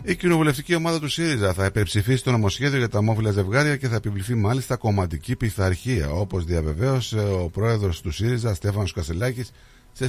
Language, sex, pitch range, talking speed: Greek, male, 90-125 Hz, 165 wpm